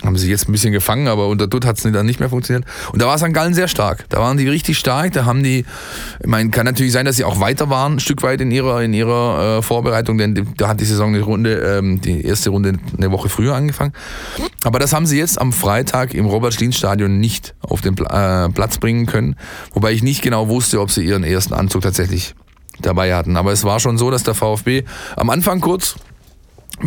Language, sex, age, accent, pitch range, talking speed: German, male, 20-39, German, 100-125 Hz, 240 wpm